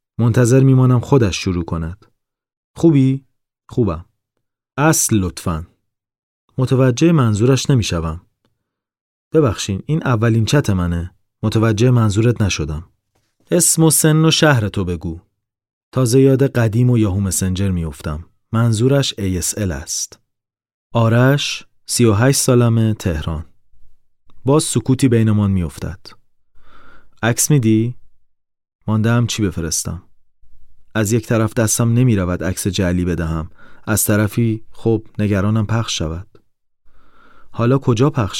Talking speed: 110 wpm